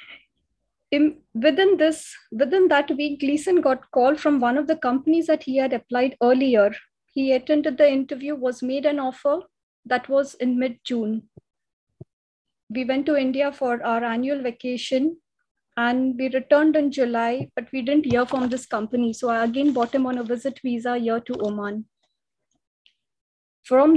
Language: English